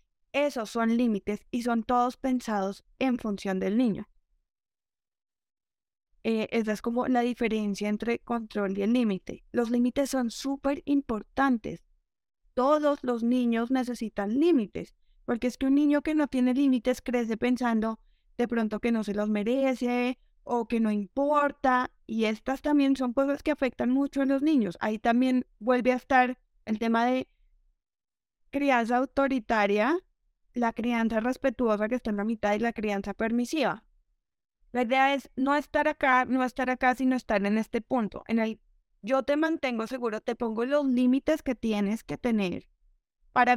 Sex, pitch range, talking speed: female, 225-265 Hz, 160 wpm